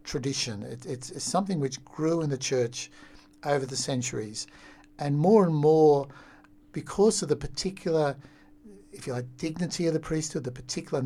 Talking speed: 155 wpm